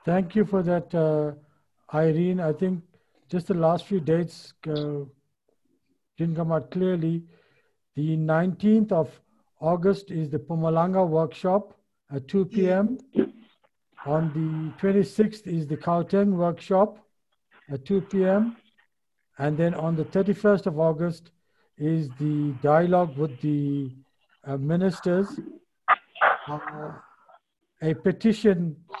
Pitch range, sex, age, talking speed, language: 155-185 Hz, male, 60-79, 115 wpm, English